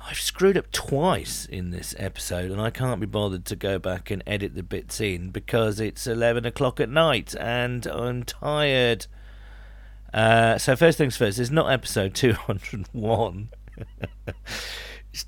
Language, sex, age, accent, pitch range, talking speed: English, male, 40-59, British, 95-125 Hz, 155 wpm